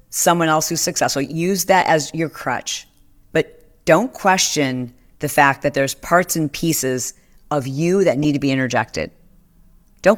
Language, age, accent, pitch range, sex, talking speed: English, 40-59, American, 135-180 Hz, female, 160 wpm